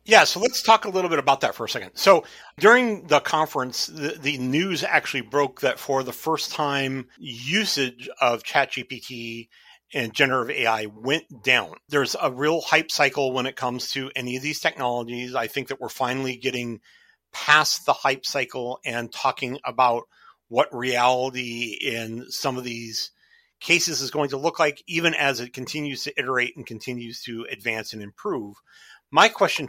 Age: 40-59